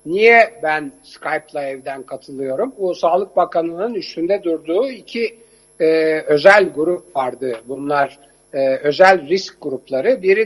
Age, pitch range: 60-79, 150-210 Hz